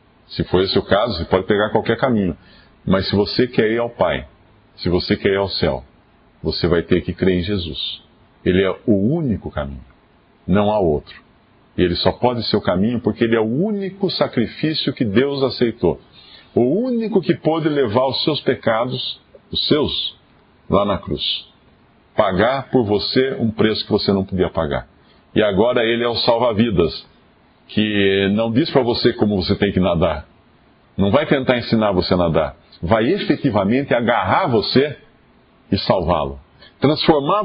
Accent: Brazilian